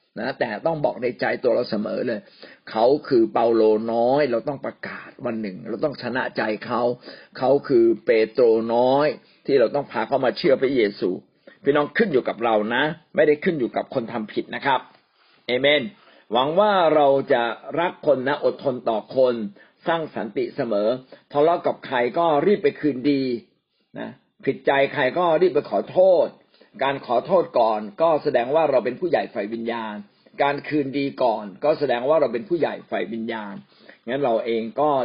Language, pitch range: Thai, 115-160 Hz